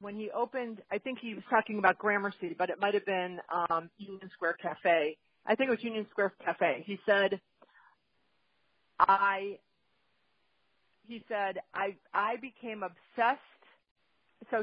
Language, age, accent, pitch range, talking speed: English, 40-59, American, 180-215 Hz, 150 wpm